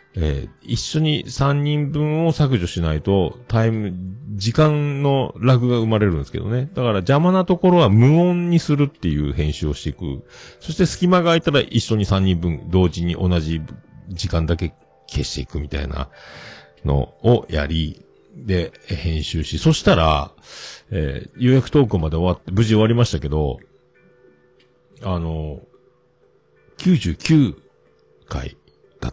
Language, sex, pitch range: Japanese, male, 80-125 Hz